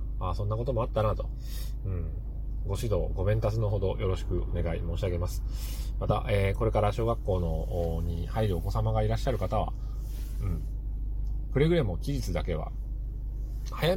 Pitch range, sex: 75-110 Hz, male